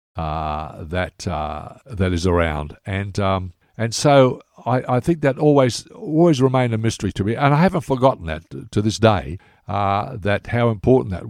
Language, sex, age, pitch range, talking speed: English, male, 60-79, 90-120 Hz, 185 wpm